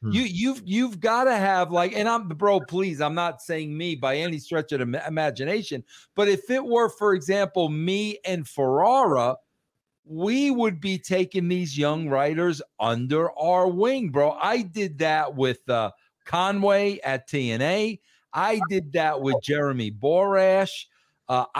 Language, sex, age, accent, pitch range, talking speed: English, male, 50-69, American, 155-210 Hz, 155 wpm